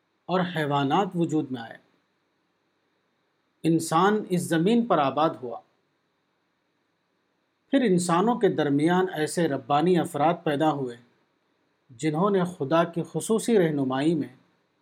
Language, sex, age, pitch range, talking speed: Urdu, male, 50-69, 145-190 Hz, 110 wpm